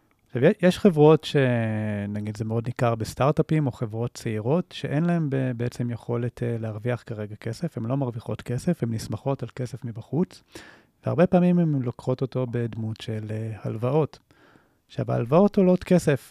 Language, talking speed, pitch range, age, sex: Hebrew, 140 wpm, 115-145 Hz, 30-49, male